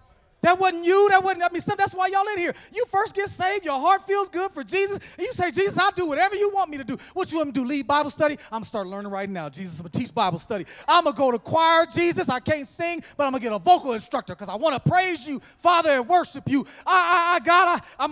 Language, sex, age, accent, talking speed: English, male, 30-49, American, 300 wpm